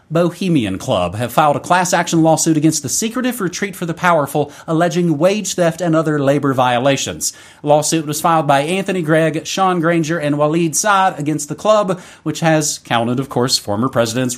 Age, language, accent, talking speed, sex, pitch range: 30-49, English, American, 185 wpm, male, 130-175 Hz